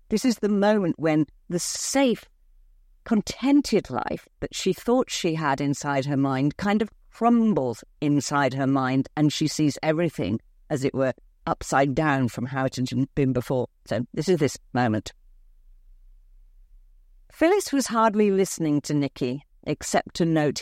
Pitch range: 125-210 Hz